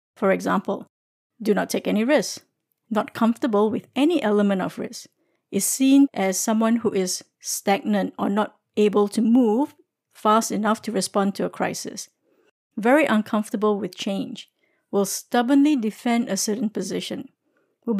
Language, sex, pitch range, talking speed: English, female, 210-265 Hz, 145 wpm